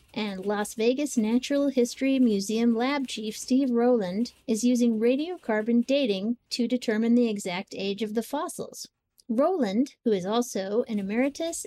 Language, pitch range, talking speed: English, 215-265 Hz, 145 wpm